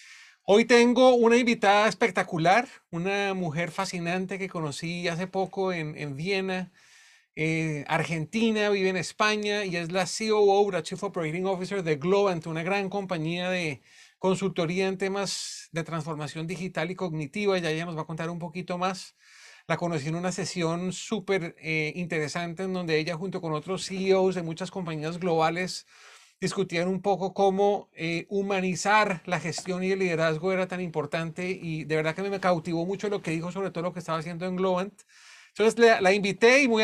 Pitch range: 170-200 Hz